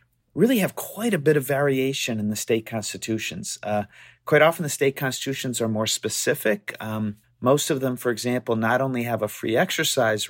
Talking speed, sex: 185 wpm, male